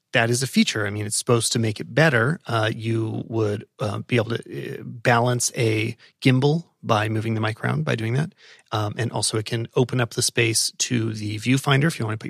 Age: 30-49